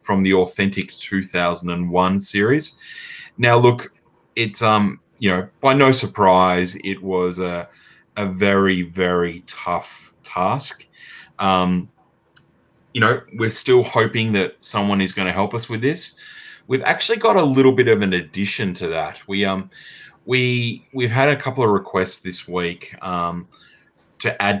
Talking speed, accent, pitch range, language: 150 wpm, Australian, 90-115 Hz, English